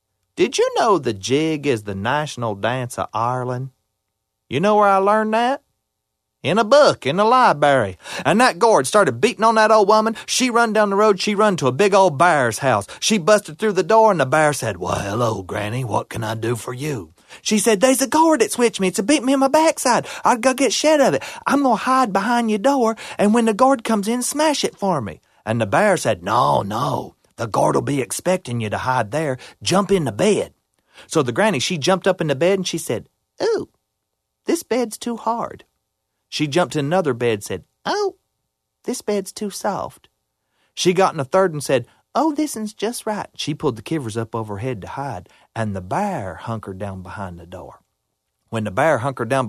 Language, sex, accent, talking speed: English, male, American, 225 wpm